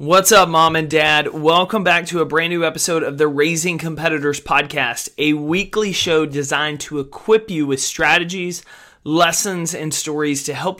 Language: English